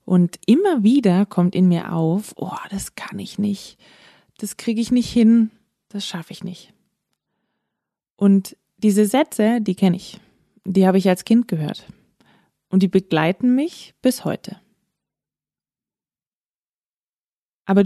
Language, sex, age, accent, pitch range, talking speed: German, female, 20-39, German, 180-220 Hz, 135 wpm